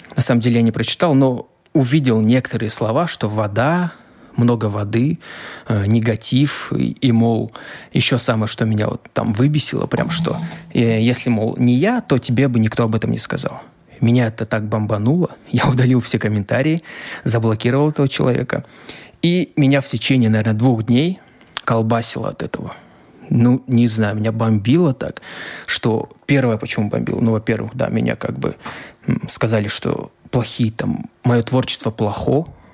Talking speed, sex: 150 wpm, male